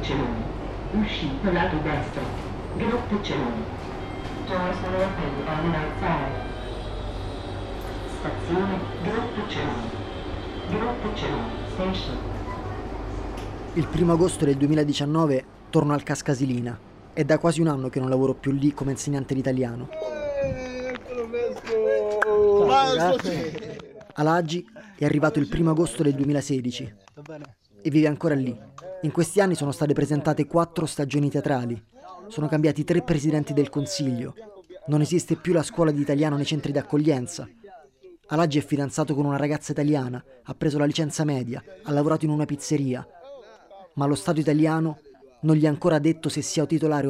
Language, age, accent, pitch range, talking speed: Italian, 40-59, native, 135-160 Hz, 140 wpm